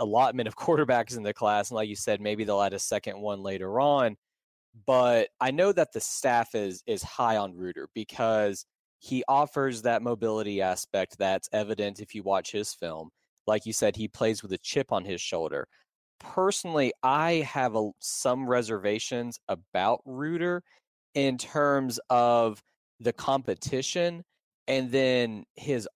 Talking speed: 155 wpm